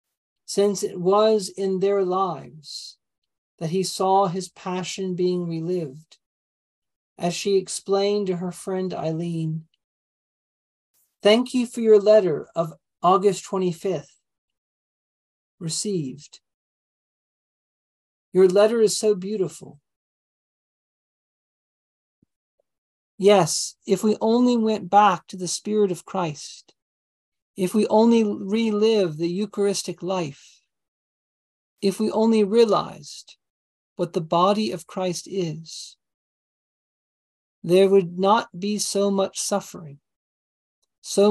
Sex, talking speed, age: male, 100 wpm, 40-59